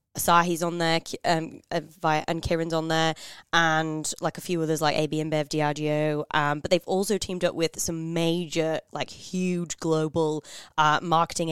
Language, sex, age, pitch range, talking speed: English, female, 20-39, 155-175 Hz, 165 wpm